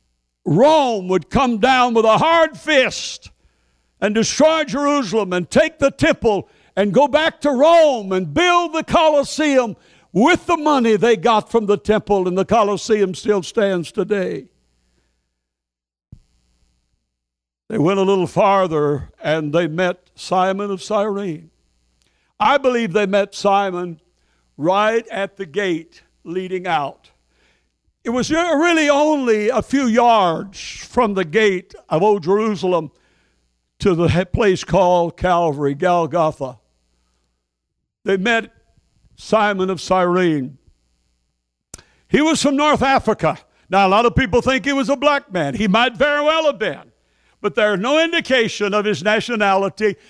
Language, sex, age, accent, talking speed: English, male, 60-79, American, 135 wpm